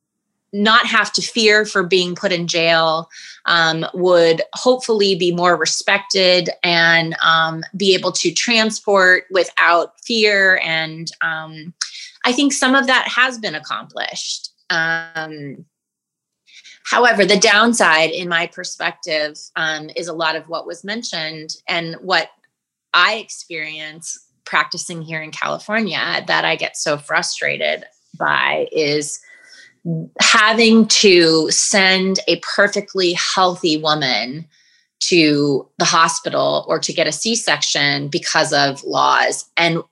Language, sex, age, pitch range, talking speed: English, female, 20-39, 155-195 Hz, 125 wpm